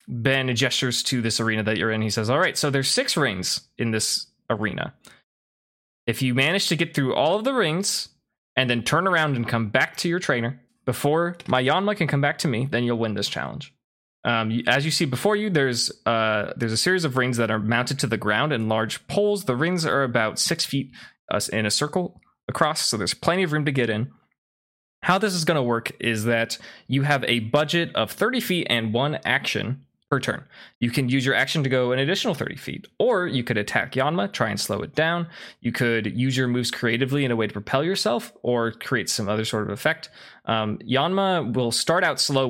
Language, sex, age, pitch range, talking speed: English, male, 20-39, 115-145 Hz, 225 wpm